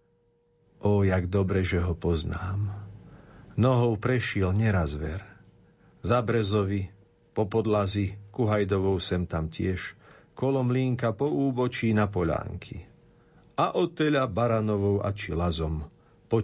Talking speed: 110 wpm